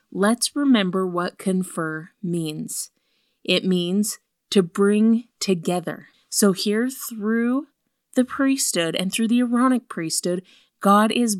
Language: English